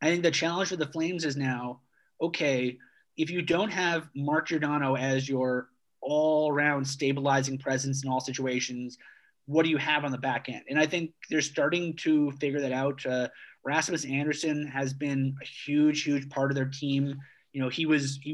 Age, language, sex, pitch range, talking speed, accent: 20-39, English, male, 130-150 Hz, 195 wpm, American